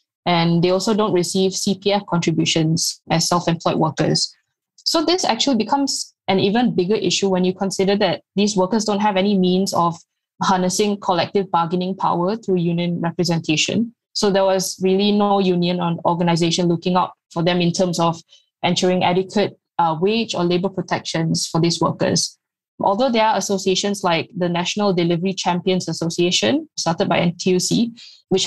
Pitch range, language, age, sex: 175-205 Hz, English, 20-39, female